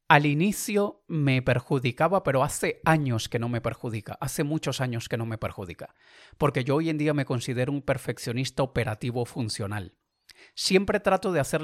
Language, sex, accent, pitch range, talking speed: Spanish, male, Spanish, 125-180 Hz, 170 wpm